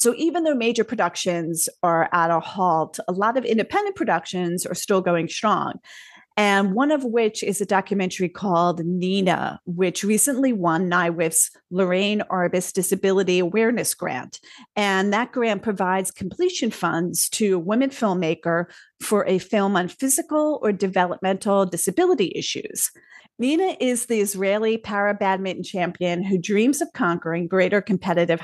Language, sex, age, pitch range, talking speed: English, female, 40-59, 175-230 Hz, 145 wpm